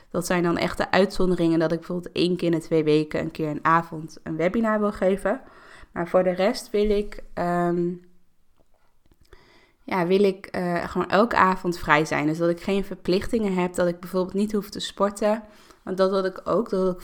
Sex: female